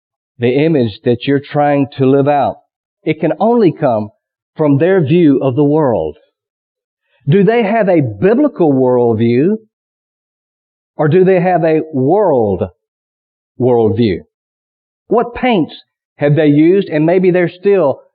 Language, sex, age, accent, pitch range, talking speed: English, male, 50-69, American, 135-180 Hz, 130 wpm